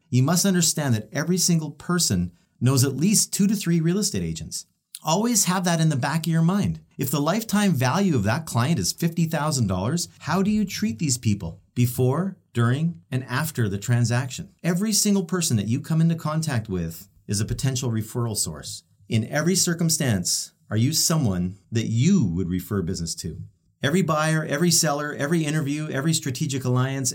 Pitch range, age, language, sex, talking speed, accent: 115-175 Hz, 40-59, English, male, 180 wpm, American